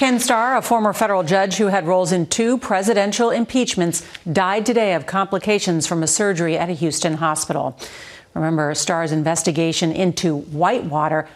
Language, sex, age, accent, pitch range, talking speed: English, female, 40-59, American, 165-210 Hz, 155 wpm